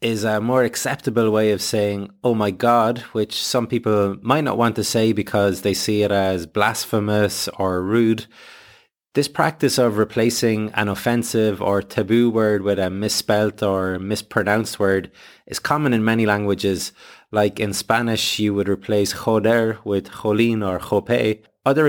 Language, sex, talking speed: English, male, 160 wpm